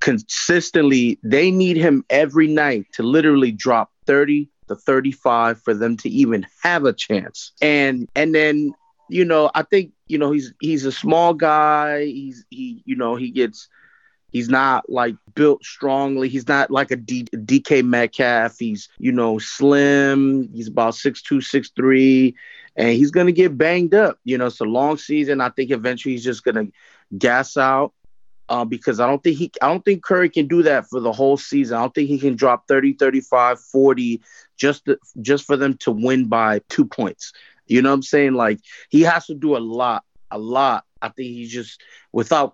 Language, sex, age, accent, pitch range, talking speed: English, male, 30-49, American, 125-155 Hz, 190 wpm